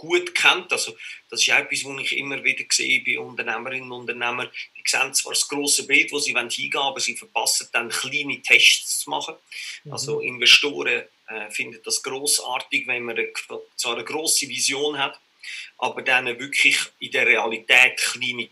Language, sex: German, male